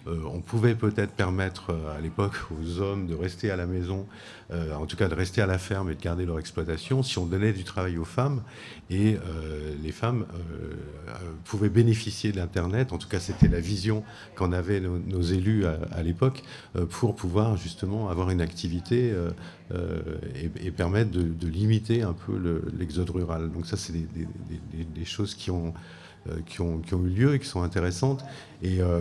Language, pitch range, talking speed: French, 85-105 Hz, 210 wpm